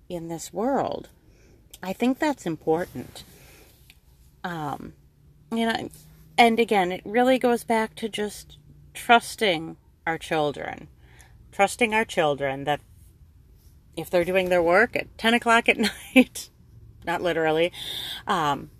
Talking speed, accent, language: 130 wpm, American, English